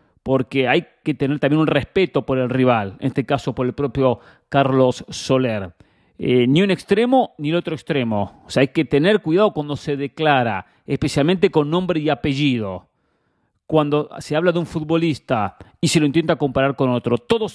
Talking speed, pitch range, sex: 185 wpm, 125-160 Hz, male